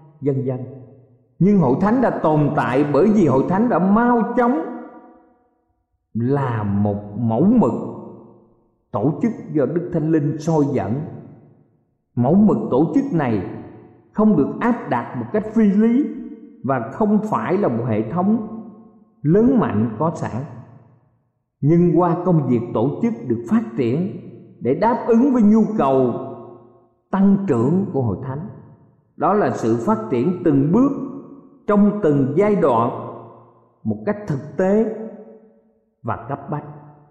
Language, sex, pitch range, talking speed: Vietnamese, male, 125-205 Hz, 145 wpm